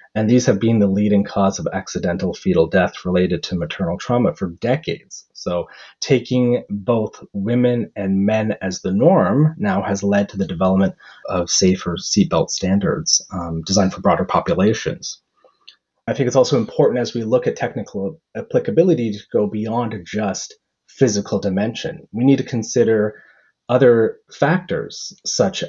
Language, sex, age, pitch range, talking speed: English, male, 30-49, 95-125 Hz, 150 wpm